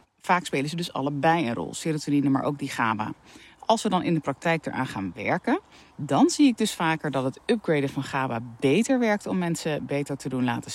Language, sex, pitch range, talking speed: Dutch, female, 135-170 Hz, 220 wpm